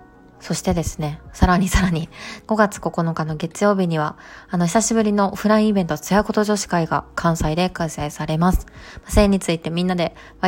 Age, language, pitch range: 20-39, Japanese, 155-190 Hz